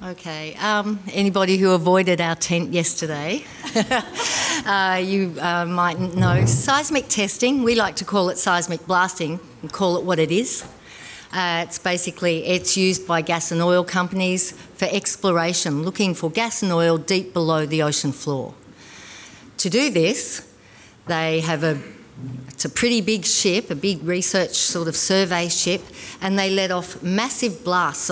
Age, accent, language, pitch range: 50-69, Australian, English, 165-205 Hz